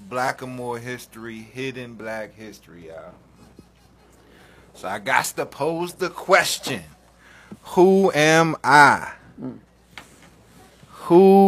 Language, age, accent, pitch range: English, 30-49, American, 110-155 Hz